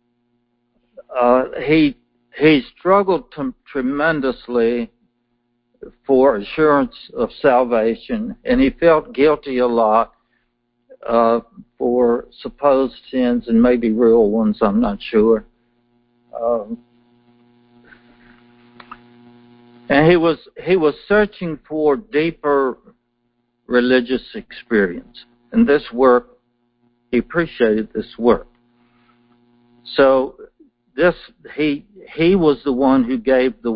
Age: 60-79